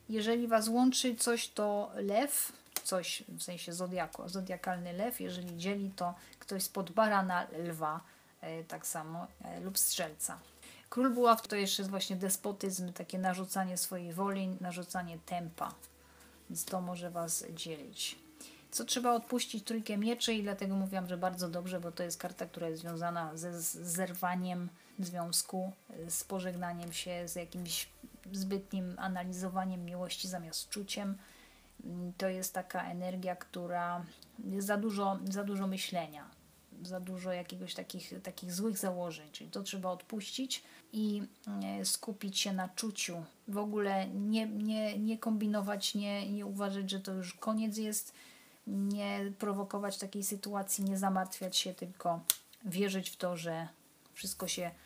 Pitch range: 180-205 Hz